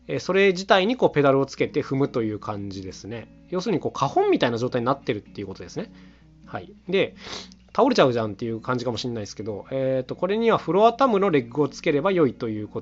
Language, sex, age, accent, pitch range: Japanese, male, 20-39, native, 115-180 Hz